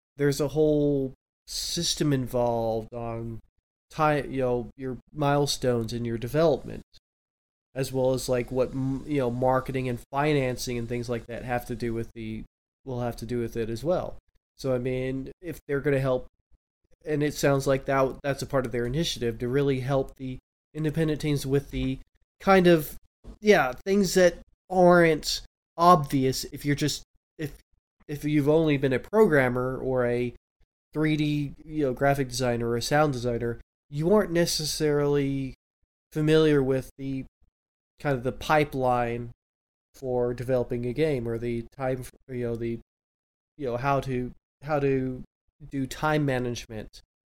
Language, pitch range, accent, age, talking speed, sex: English, 120-150 Hz, American, 20-39, 155 wpm, male